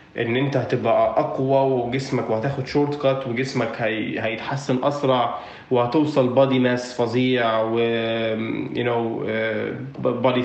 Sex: male